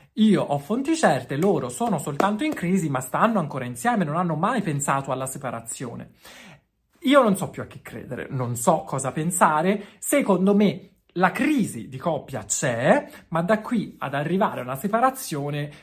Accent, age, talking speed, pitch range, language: native, 30-49, 170 wpm, 145-210 Hz, Italian